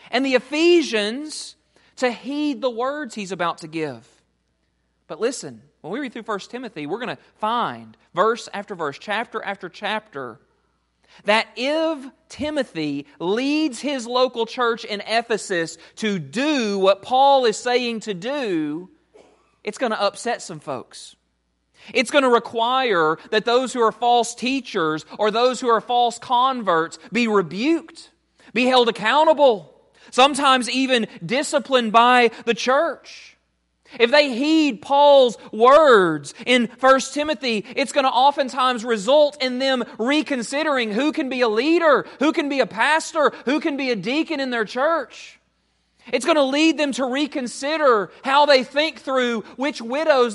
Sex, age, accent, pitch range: male, 40-59, American, 220-285 Hz